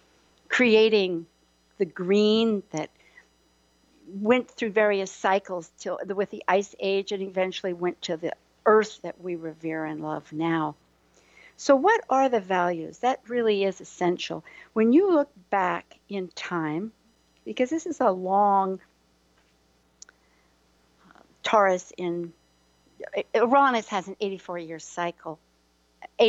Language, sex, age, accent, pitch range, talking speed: English, female, 60-79, American, 160-230 Hz, 120 wpm